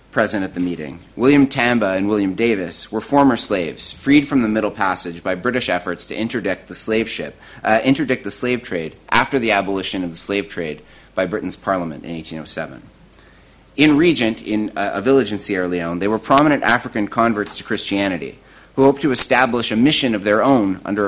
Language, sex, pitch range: English, male, 90-120 Hz